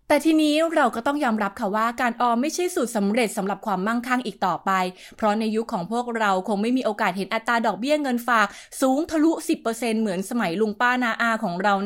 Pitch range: 205-260 Hz